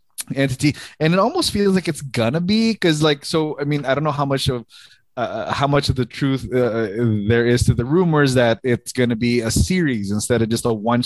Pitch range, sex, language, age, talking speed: 115-145 Hz, male, English, 20-39, 240 wpm